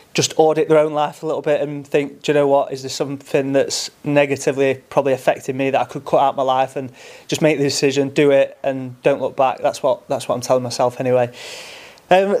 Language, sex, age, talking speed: English, male, 30-49, 235 wpm